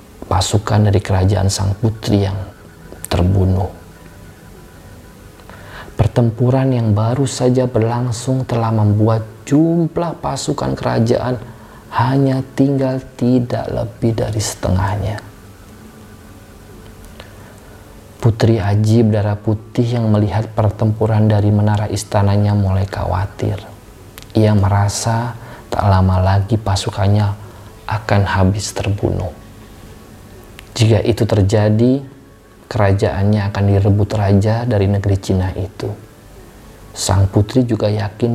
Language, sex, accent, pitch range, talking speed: Indonesian, male, native, 100-110 Hz, 90 wpm